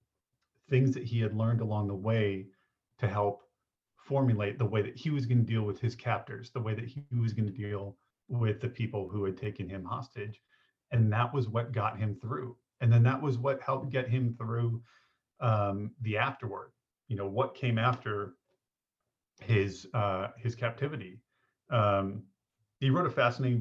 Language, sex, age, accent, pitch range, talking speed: English, male, 40-59, American, 105-125 Hz, 180 wpm